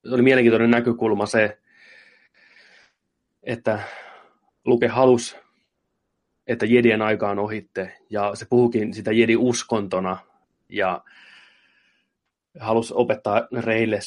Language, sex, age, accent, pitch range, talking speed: Finnish, male, 20-39, native, 95-115 Hz, 90 wpm